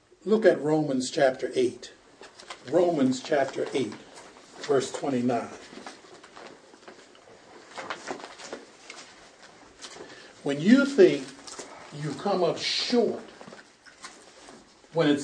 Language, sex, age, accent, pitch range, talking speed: English, male, 60-79, American, 150-225 Hz, 75 wpm